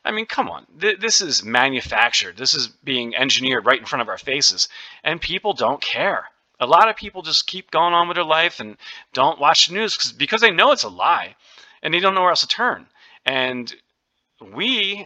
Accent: American